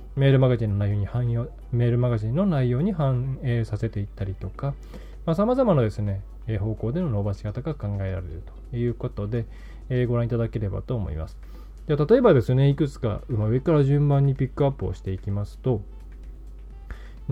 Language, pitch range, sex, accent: Japanese, 100-150 Hz, male, native